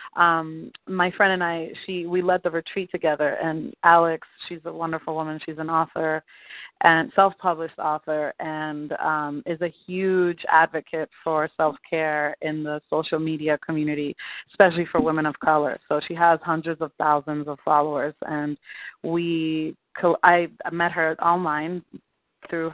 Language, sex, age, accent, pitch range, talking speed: English, female, 30-49, American, 155-180 Hz, 160 wpm